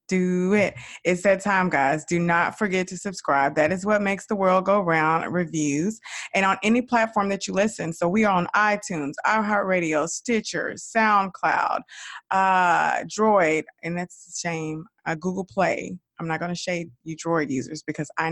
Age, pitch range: 20-39, 160-190 Hz